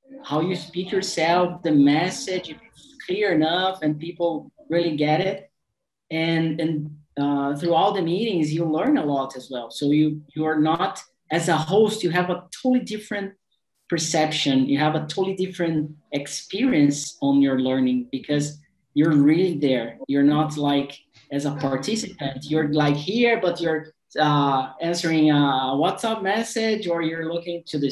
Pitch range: 140-175 Hz